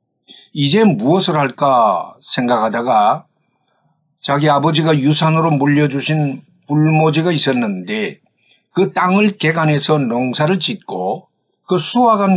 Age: 50-69